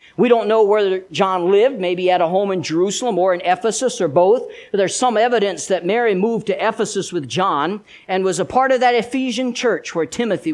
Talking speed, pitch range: 210 wpm, 155-215 Hz